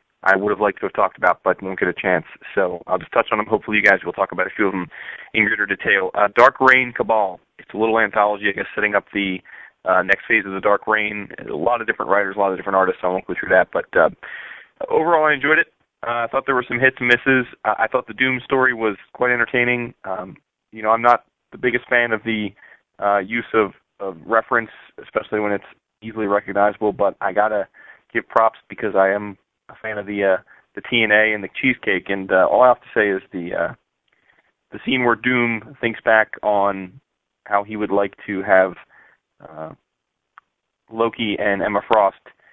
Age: 20-39